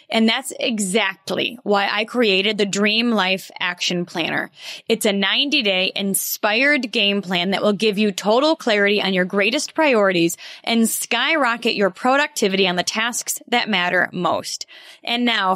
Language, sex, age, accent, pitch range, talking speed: English, female, 20-39, American, 200-265 Hz, 150 wpm